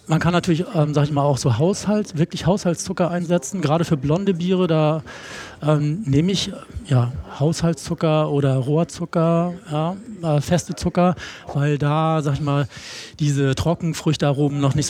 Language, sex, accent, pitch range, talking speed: German, male, German, 150-175 Hz, 155 wpm